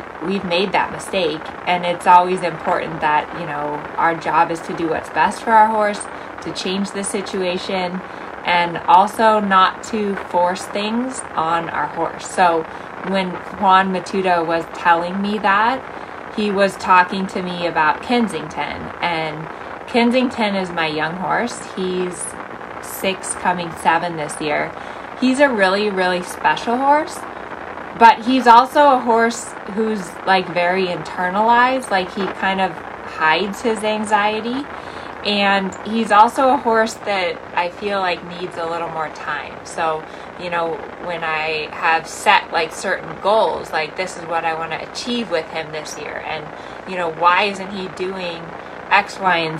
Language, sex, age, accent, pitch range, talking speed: English, female, 20-39, American, 170-215 Hz, 155 wpm